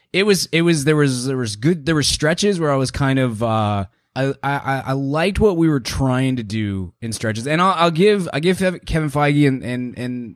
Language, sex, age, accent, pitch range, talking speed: English, male, 20-39, American, 100-140 Hz, 240 wpm